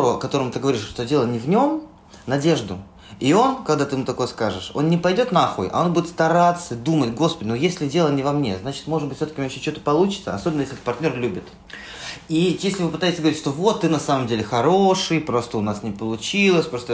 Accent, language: native, Russian